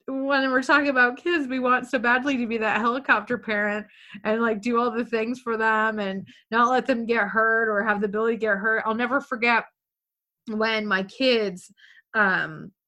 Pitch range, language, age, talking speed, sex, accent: 190-245 Hz, English, 20-39, 195 wpm, female, American